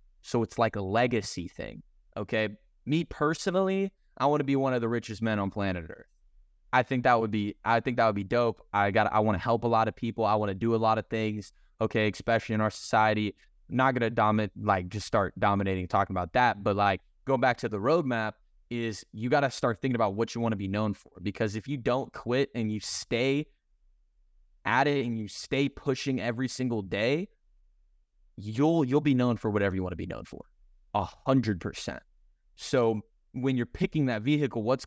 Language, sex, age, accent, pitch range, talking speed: English, male, 20-39, American, 105-125 Hz, 210 wpm